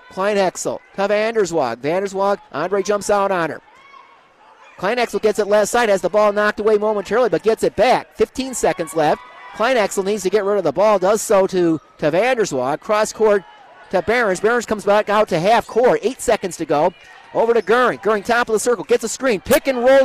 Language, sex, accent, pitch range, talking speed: English, male, American, 205-270 Hz, 205 wpm